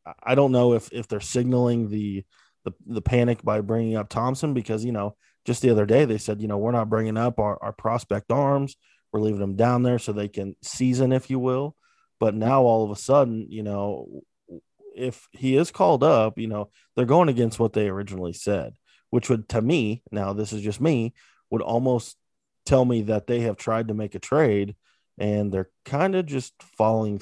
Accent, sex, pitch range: American, male, 105-120 Hz